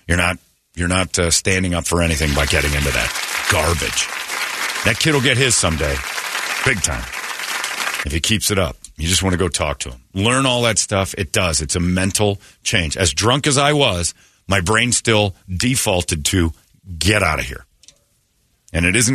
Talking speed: 195 wpm